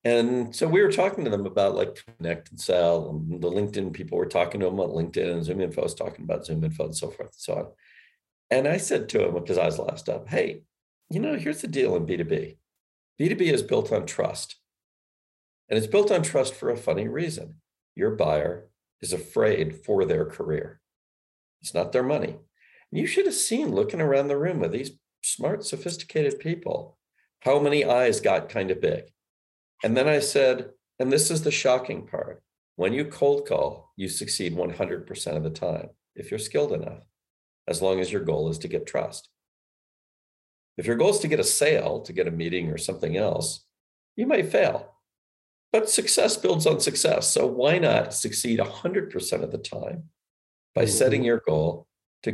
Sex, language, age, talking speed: male, English, 50-69, 195 wpm